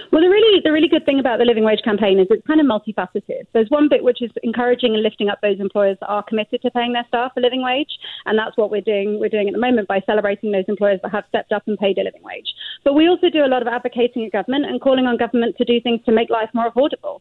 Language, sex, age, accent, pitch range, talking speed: English, female, 30-49, British, 205-245 Hz, 290 wpm